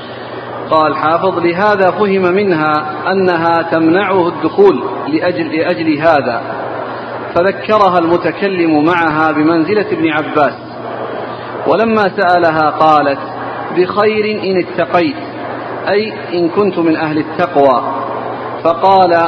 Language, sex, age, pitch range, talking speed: Arabic, male, 40-59, 160-185 Hz, 95 wpm